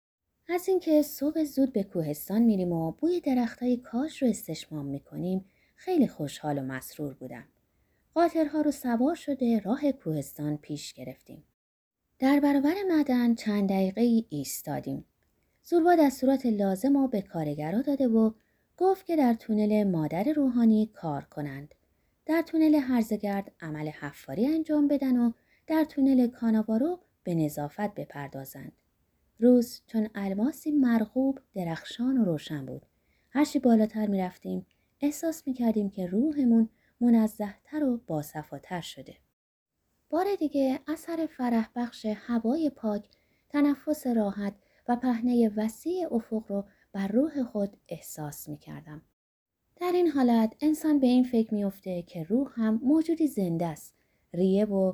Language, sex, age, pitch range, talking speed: Persian, female, 30-49, 185-280 Hz, 130 wpm